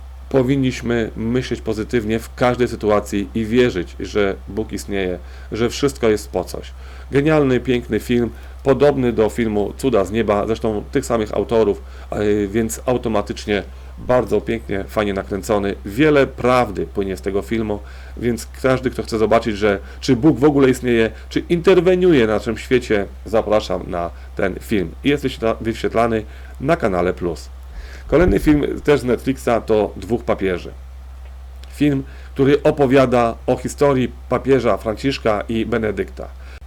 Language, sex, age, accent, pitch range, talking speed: Polish, male, 40-59, native, 85-125 Hz, 135 wpm